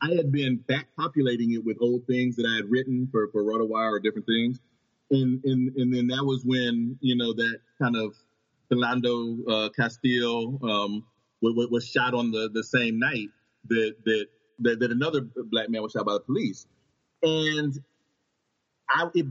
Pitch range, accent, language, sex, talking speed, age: 115-140 Hz, American, English, male, 180 wpm, 30-49